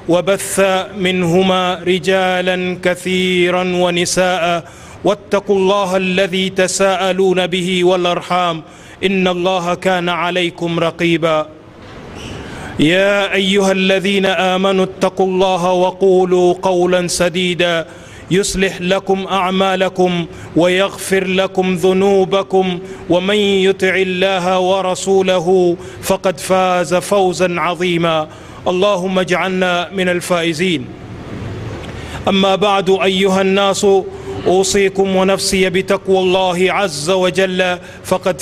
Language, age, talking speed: Swahili, 30-49, 85 wpm